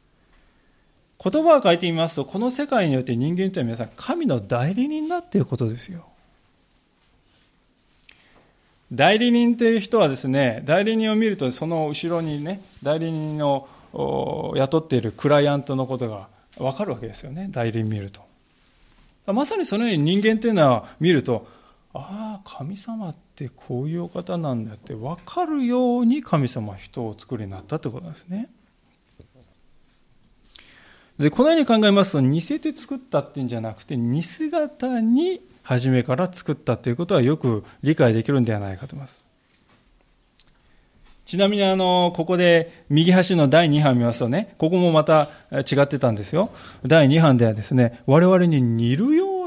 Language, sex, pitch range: Japanese, male, 125-200 Hz